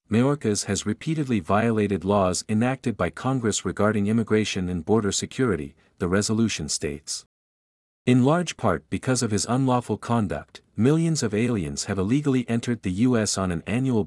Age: 50-69